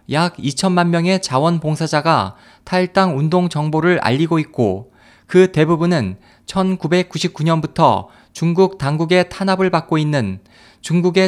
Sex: male